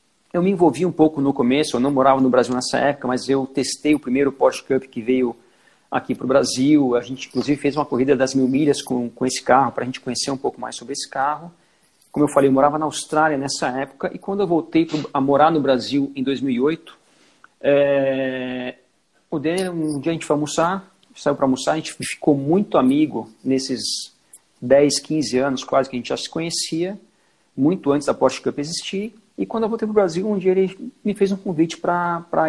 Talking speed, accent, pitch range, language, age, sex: 215 wpm, Brazilian, 135-165 Hz, Portuguese, 50-69, male